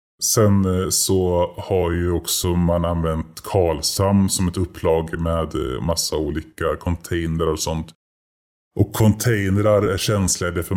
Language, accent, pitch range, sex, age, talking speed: Swedish, native, 85-100 Hz, female, 30-49, 125 wpm